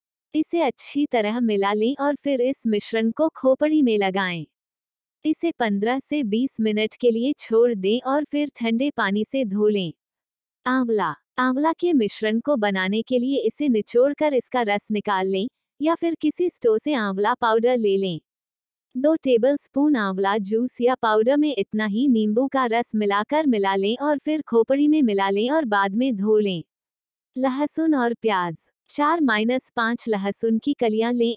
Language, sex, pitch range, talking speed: Hindi, female, 210-275 Hz, 170 wpm